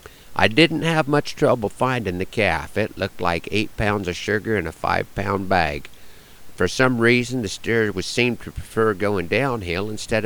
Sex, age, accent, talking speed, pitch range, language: male, 50-69, American, 185 wpm, 90-115 Hz, English